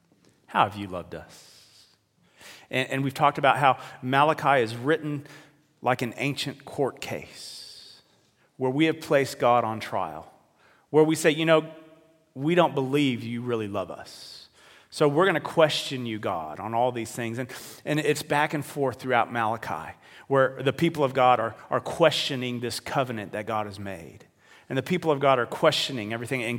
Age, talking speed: 40-59, 180 wpm